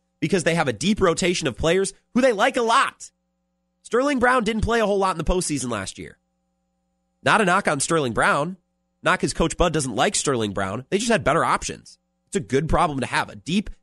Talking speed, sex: 225 wpm, male